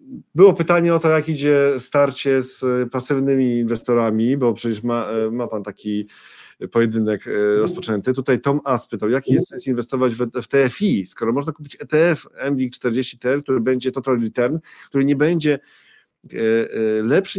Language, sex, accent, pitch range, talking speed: Polish, male, native, 105-135 Hz, 145 wpm